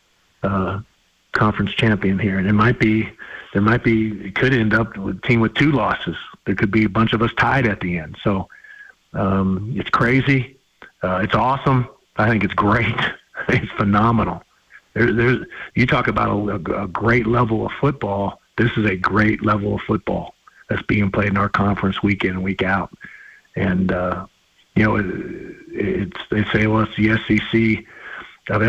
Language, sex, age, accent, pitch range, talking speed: English, male, 50-69, American, 100-115 Hz, 180 wpm